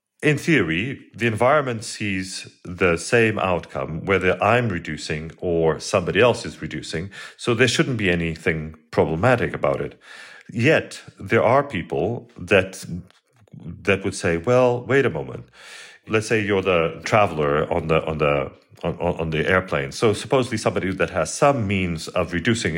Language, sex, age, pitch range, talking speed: English, male, 40-59, 85-115 Hz, 165 wpm